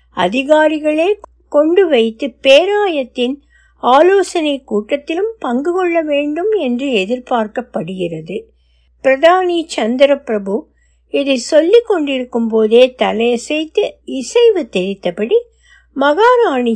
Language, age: Tamil, 60-79